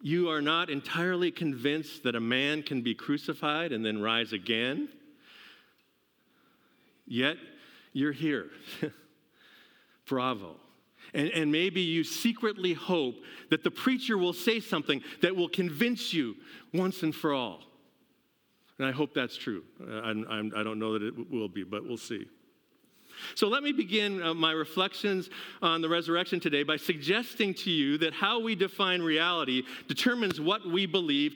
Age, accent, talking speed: 50-69, American, 155 wpm